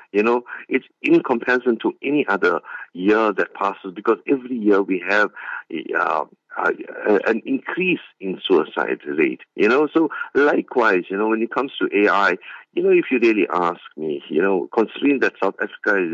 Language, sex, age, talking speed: English, male, 50-69, 180 wpm